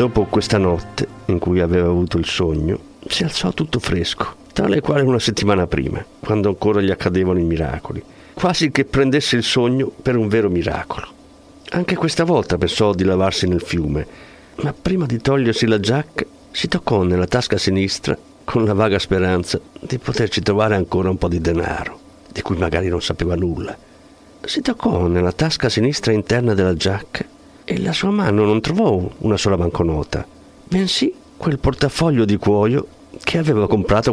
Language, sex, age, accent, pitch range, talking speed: Italian, male, 50-69, native, 95-135 Hz, 165 wpm